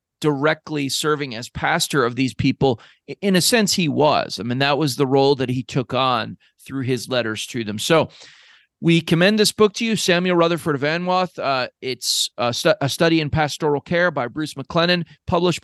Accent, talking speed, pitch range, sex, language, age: American, 195 wpm, 135-165 Hz, male, English, 40-59